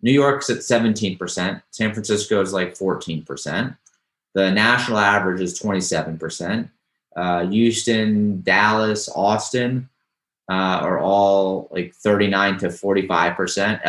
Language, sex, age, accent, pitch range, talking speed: English, male, 30-49, American, 95-110 Hz, 120 wpm